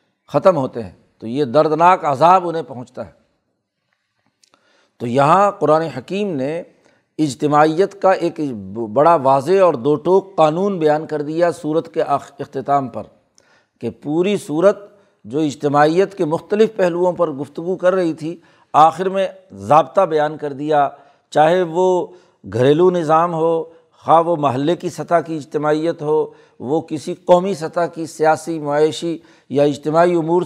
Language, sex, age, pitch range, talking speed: Urdu, male, 60-79, 150-175 Hz, 145 wpm